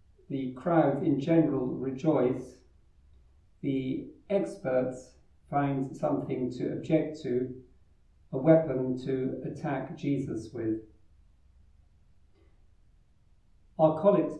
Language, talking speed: English, 85 wpm